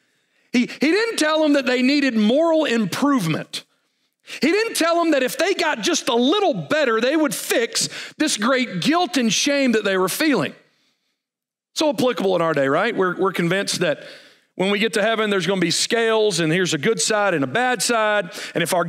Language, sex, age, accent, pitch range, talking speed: English, male, 40-59, American, 200-285 Hz, 210 wpm